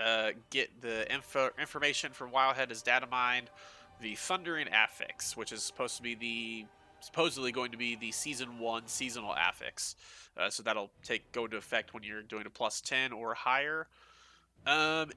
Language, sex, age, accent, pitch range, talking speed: English, male, 20-39, American, 115-145 Hz, 170 wpm